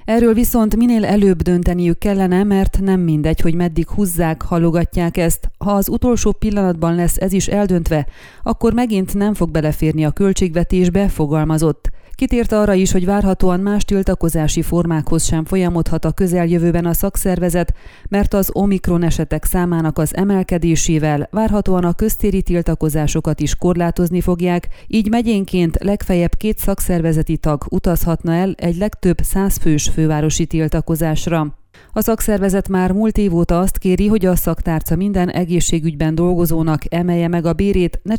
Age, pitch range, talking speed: 30-49, 165-195 Hz, 140 wpm